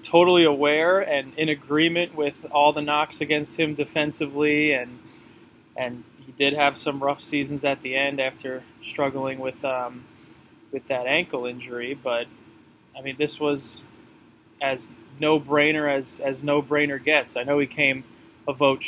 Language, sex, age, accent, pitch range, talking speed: English, male, 20-39, American, 130-155 Hz, 155 wpm